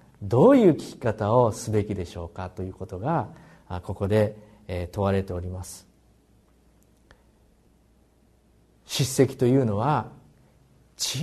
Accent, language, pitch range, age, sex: native, Japanese, 100-160 Hz, 40-59, male